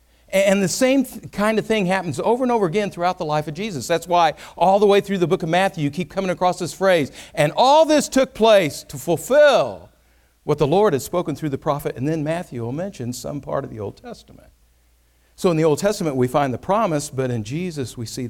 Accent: American